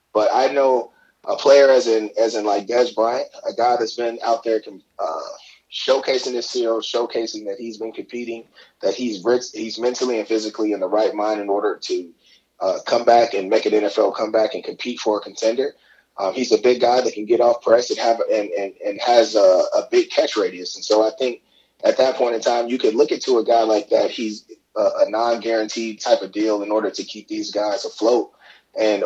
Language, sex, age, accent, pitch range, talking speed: English, male, 20-39, American, 110-140 Hz, 220 wpm